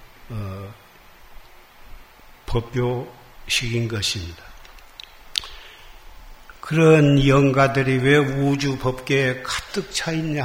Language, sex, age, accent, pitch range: Korean, male, 60-79, native, 125-155 Hz